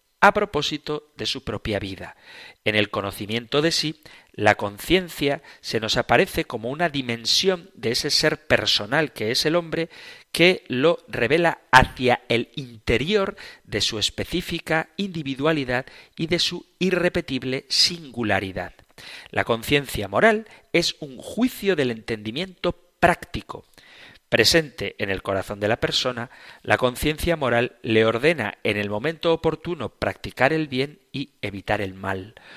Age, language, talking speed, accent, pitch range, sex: 40-59, Spanish, 135 wpm, Spanish, 110-165 Hz, male